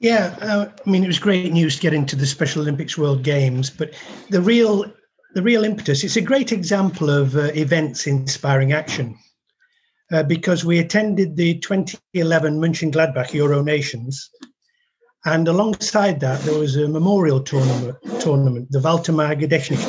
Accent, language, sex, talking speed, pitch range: British, English, male, 155 wpm, 145-195 Hz